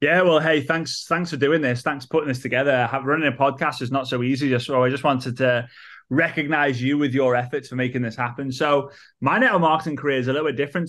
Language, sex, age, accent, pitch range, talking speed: English, male, 20-39, British, 125-155 Hz, 255 wpm